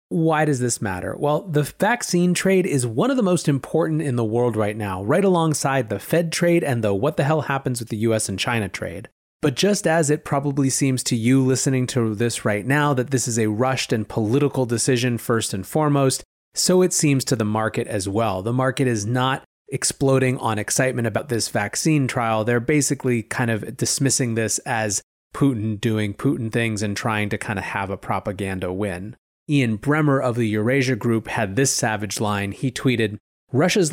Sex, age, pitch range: male, 30-49, 110-150 Hz